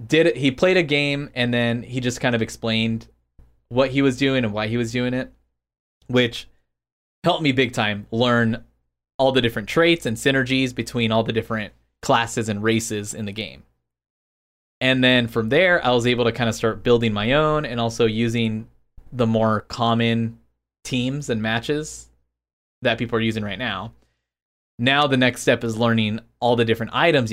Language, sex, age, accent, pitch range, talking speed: English, male, 20-39, American, 105-130 Hz, 180 wpm